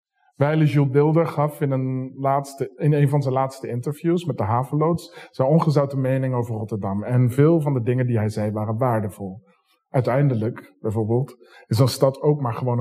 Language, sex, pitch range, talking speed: Dutch, male, 110-140 Hz, 180 wpm